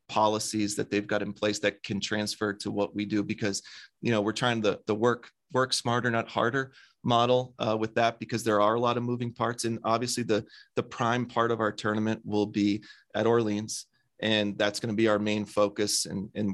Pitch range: 105-115 Hz